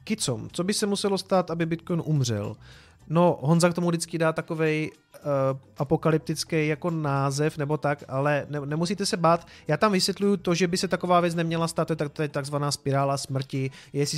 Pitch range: 140-165 Hz